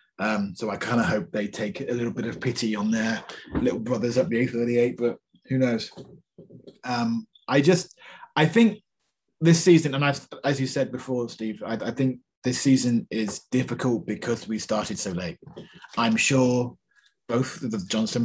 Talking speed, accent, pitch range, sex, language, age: 185 wpm, British, 115-145 Hz, male, English, 20-39